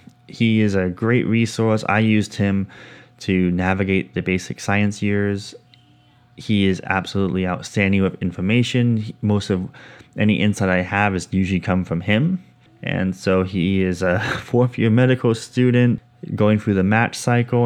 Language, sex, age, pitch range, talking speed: English, male, 20-39, 95-115 Hz, 155 wpm